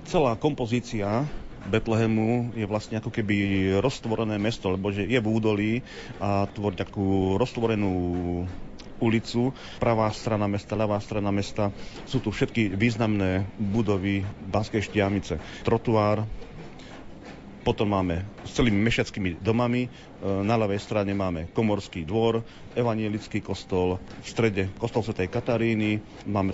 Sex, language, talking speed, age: male, Slovak, 120 wpm, 40-59